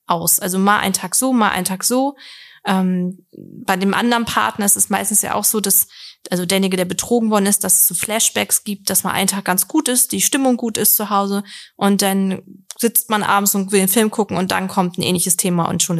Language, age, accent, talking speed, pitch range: German, 20-39, German, 240 wpm, 185-220 Hz